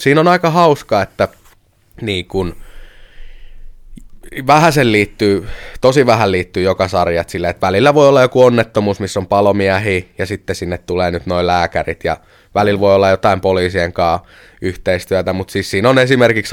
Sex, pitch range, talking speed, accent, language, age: male, 90-115 Hz, 155 wpm, native, Finnish, 20-39